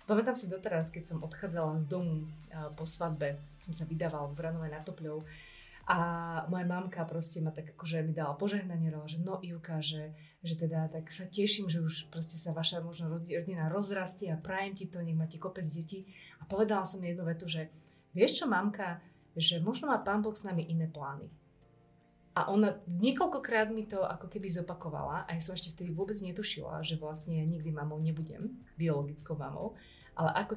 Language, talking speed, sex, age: Slovak, 185 wpm, female, 30-49